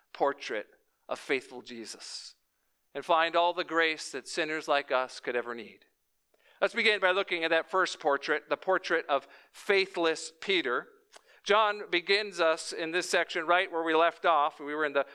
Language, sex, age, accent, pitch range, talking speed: English, male, 50-69, American, 155-200 Hz, 175 wpm